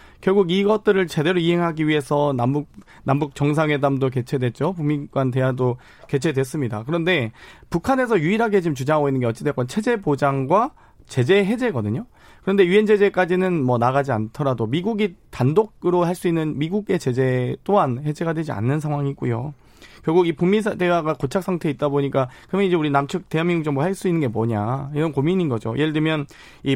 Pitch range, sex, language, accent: 135-190 Hz, male, Korean, native